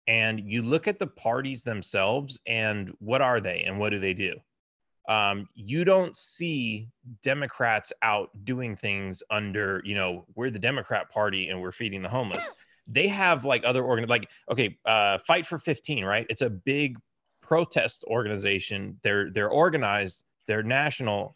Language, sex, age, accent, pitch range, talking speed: English, male, 30-49, American, 105-135 Hz, 165 wpm